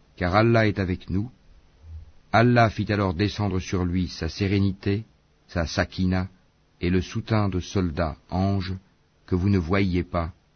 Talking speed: 150 wpm